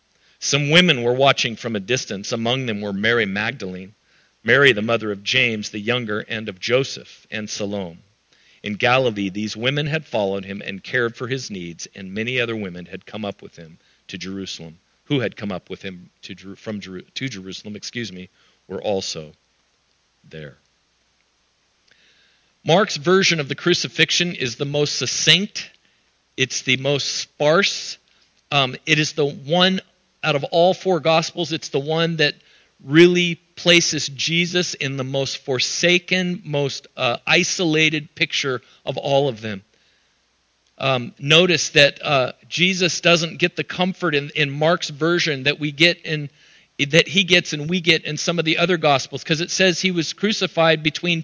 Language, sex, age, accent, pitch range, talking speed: English, male, 50-69, American, 120-175 Hz, 165 wpm